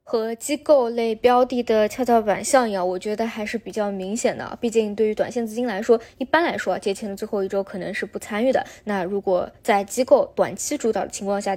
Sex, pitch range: female, 195-240 Hz